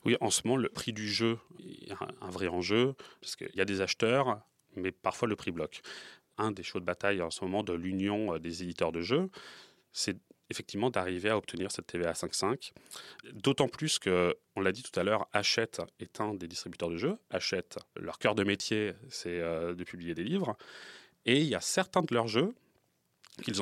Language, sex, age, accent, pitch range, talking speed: French, male, 30-49, French, 90-110 Hz, 205 wpm